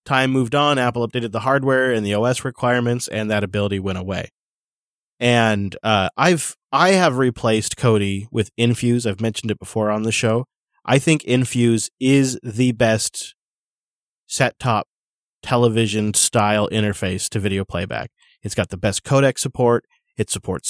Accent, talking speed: American, 150 wpm